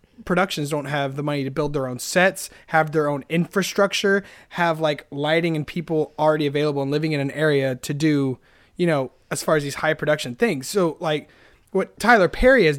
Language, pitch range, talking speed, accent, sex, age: English, 140-185 Hz, 200 wpm, American, male, 20-39